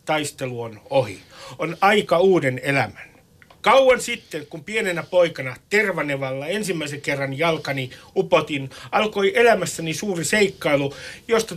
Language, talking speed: Finnish, 115 wpm